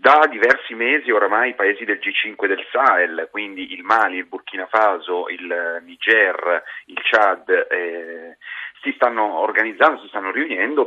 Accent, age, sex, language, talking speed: native, 30-49, male, Italian, 155 wpm